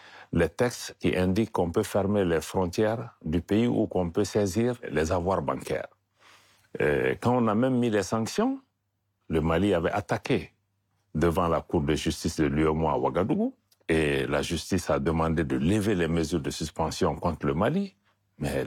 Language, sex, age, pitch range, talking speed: French, male, 60-79, 85-115 Hz, 175 wpm